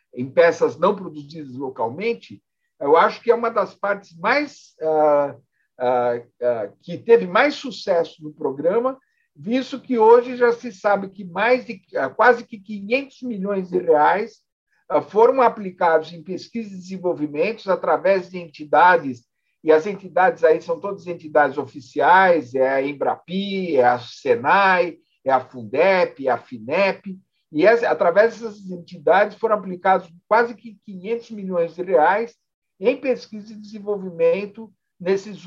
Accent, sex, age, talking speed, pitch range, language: Brazilian, male, 60-79, 145 wpm, 165-240 Hz, Portuguese